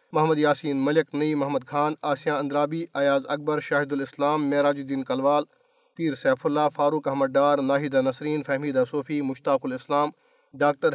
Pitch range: 140-160 Hz